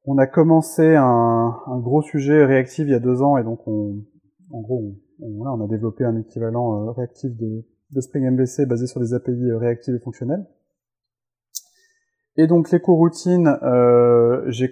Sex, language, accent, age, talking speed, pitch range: male, French, French, 30-49, 165 wpm, 115-140 Hz